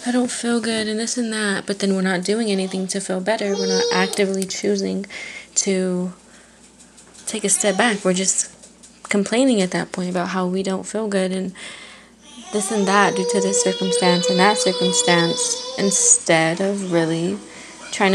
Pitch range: 185-220 Hz